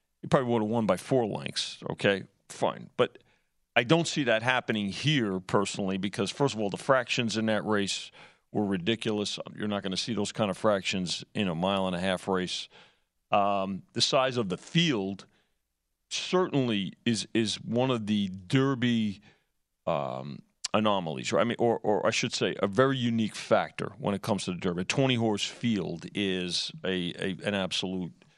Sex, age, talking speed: male, 40-59, 185 wpm